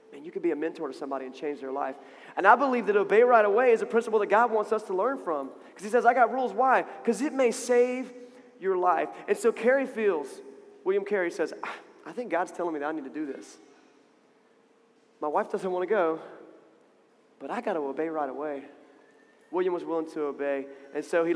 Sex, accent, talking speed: male, American, 220 wpm